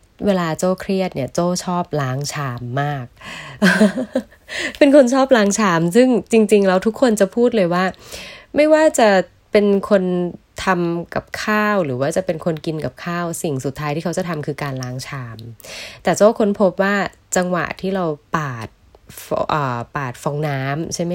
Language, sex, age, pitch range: Thai, female, 20-39, 145-195 Hz